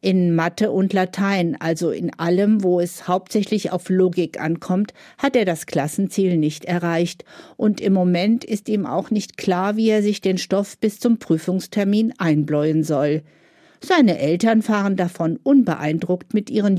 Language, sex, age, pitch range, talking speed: German, female, 50-69, 160-215 Hz, 155 wpm